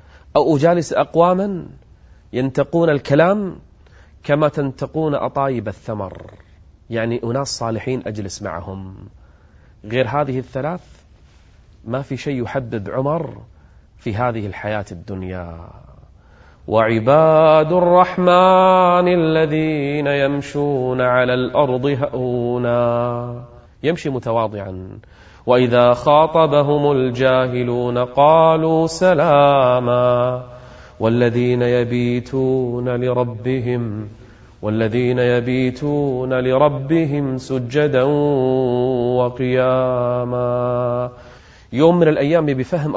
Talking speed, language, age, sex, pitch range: 75 wpm, Arabic, 30-49, male, 110-145 Hz